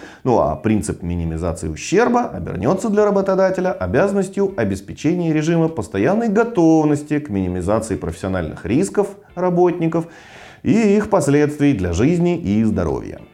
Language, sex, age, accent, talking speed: Russian, male, 30-49, native, 115 wpm